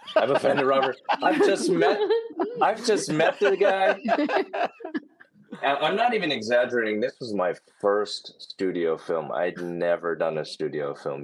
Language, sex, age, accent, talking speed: English, male, 30-49, American, 145 wpm